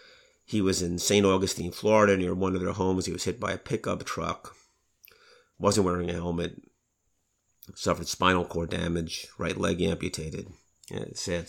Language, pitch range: English, 90-105 Hz